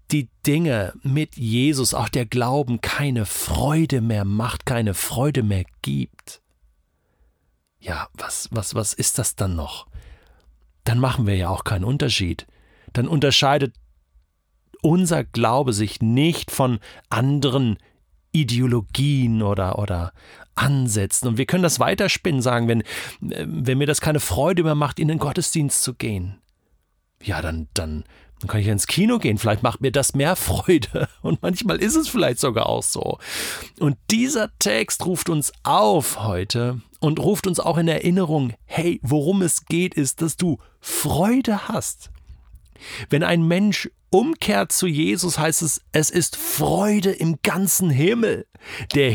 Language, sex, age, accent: German, male, 40-59, German